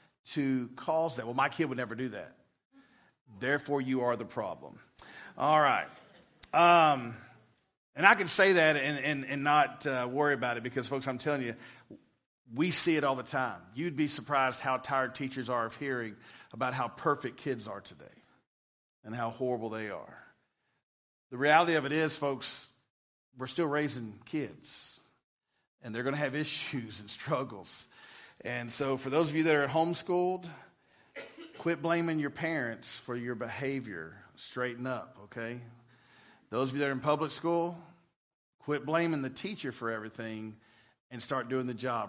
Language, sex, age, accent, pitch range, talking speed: English, male, 40-59, American, 125-165 Hz, 170 wpm